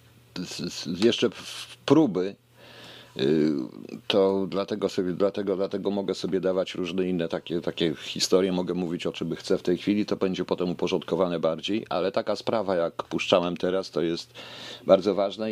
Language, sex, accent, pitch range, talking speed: Polish, male, native, 95-125 Hz, 145 wpm